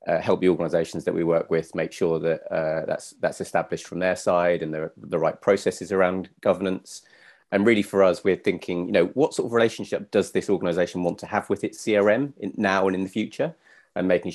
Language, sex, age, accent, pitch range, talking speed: English, male, 30-49, British, 85-95 Hz, 225 wpm